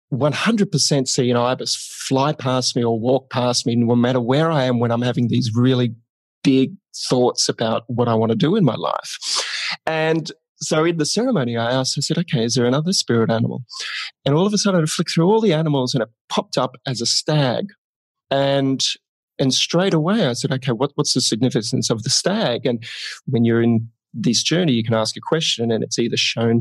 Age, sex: 30-49, male